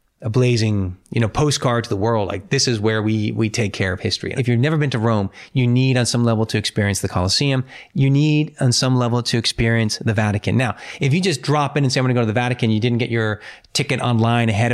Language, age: English, 30-49